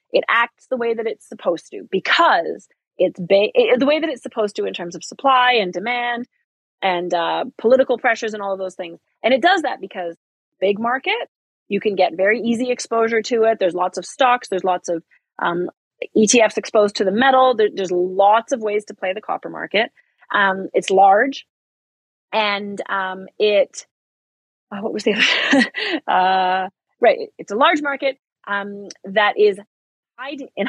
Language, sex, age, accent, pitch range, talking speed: English, female, 30-49, American, 195-270 Hz, 180 wpm